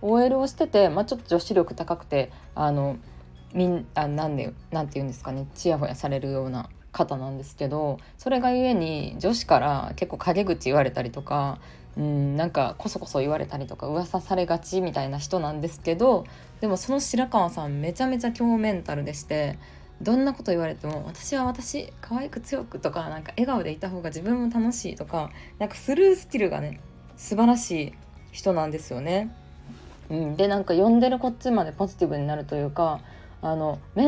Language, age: Japanese, 20-39